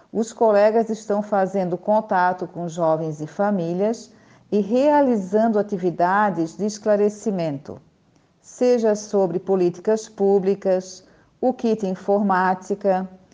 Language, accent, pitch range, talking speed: Portuguese, Brazilian, 185-230 Hz, 95 wpm